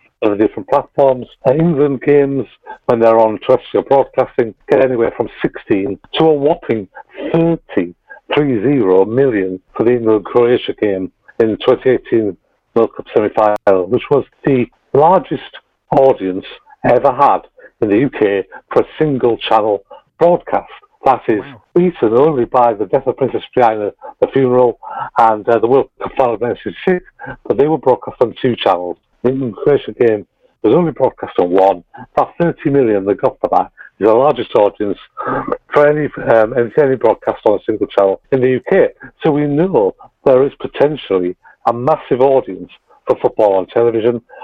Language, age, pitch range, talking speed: English, 60-79, 115-170 Hz, 155 wpm